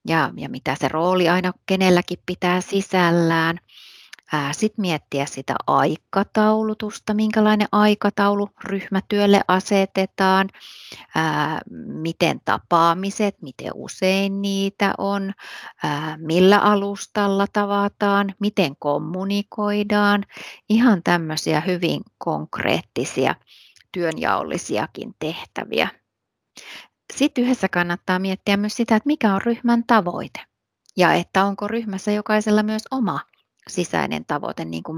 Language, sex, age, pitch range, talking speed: Finnish, female, 30-49, 175-210 Hz, 100 wpm